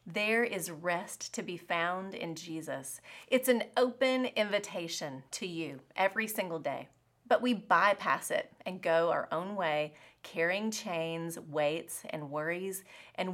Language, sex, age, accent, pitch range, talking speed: English, female, 30-49, American, 170-240 Hz, 145 wpm